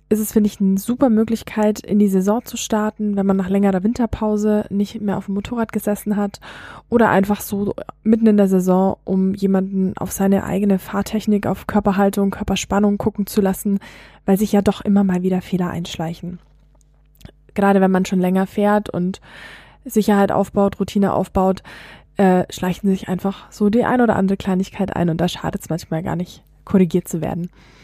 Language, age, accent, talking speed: German, 20-39, German, 180 wpm